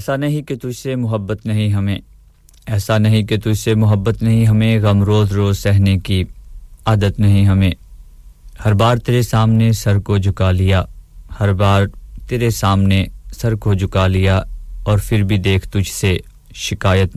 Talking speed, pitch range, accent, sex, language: 135 wpm, 95-110 Hz, Indian, male, English